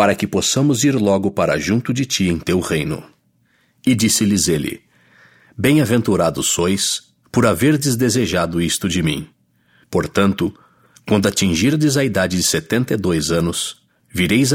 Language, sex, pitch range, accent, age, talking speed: English, male, 85-120 Hz, Brazilian, 60-79, 140 wpm